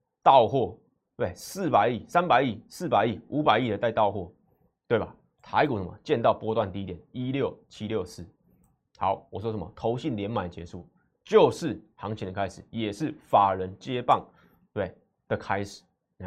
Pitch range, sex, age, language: 95-120 Hz, male, 20-39, Chinese